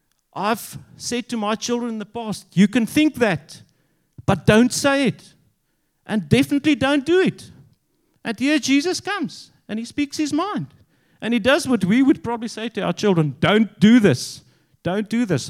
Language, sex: English, male